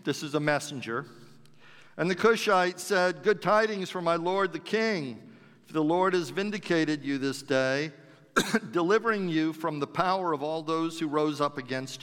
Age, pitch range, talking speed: 50-69, 145-180 Hz, 175 wpm